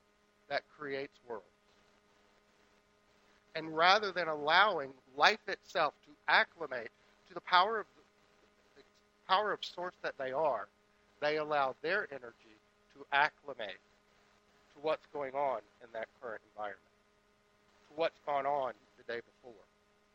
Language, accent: English, American